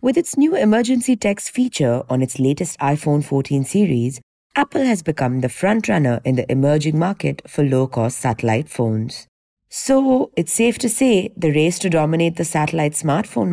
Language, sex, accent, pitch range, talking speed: English, female, Indian, 135-210 Hz, 165 wpm